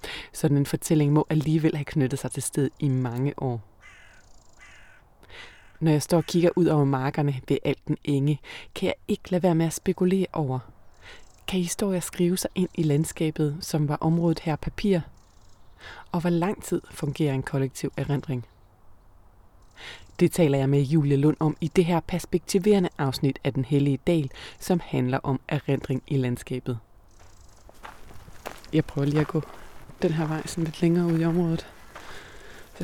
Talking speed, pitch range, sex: 165 wpm, 135-170 Hz, female